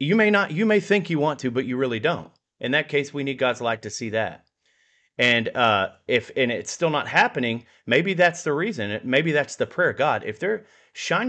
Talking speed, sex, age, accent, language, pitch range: 235 wpm, male, 30-49, American, English, 130-185 Hz